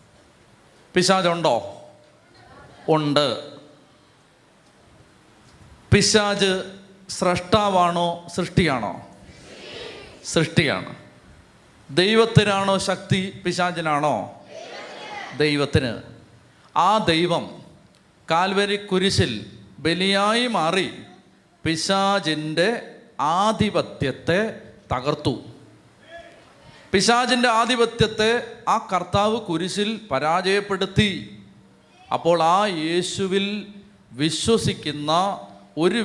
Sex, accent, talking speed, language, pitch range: male, native, 50 wpm, Malayalam, 150-205 Hz